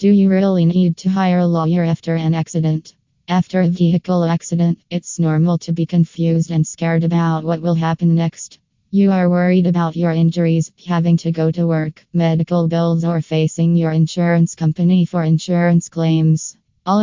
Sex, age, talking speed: female, 20-39, 175 wpm